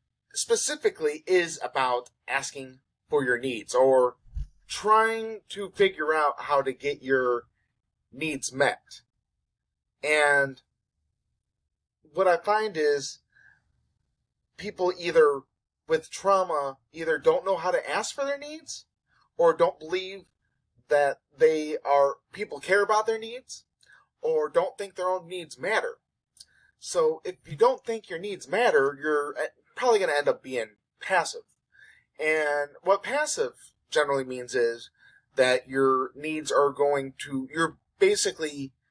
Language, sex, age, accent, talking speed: English, male, 30-49, American, 130 wpm